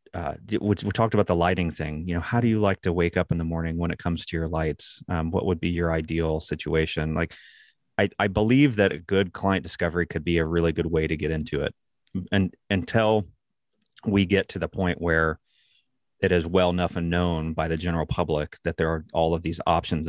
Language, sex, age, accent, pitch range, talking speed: English, male, 30-49, American, 80-95 Hz, 225 wpm